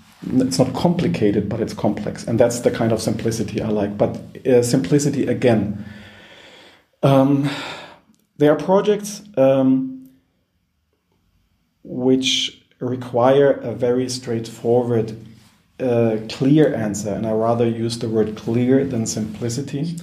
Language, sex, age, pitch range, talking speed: German, male, 40-59, 110-130 Hz, 120 wpm